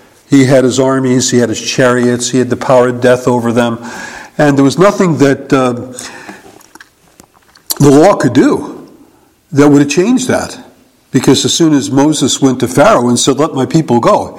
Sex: male